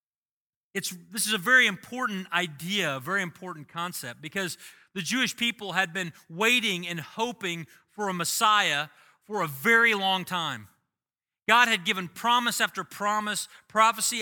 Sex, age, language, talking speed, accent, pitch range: male, 40-59, English, 145 wpm, American, 175-225 Hz